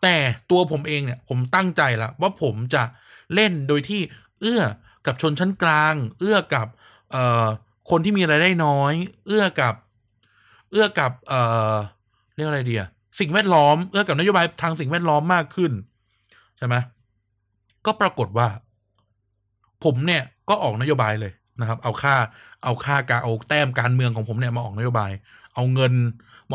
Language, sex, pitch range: Thai, male, 115-175 Hz